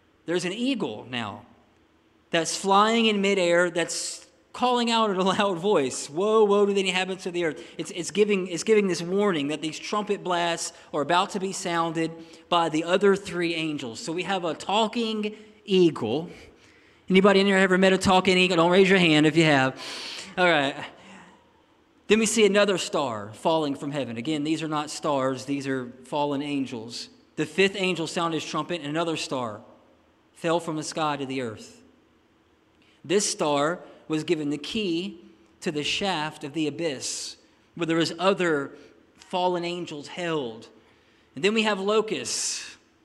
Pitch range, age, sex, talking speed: 155-195 Hz, 20-39, male, 170 wpm